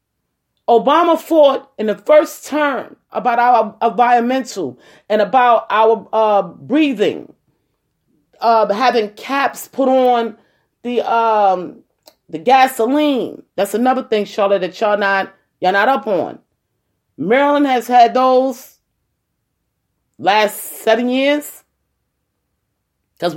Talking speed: 110 wpm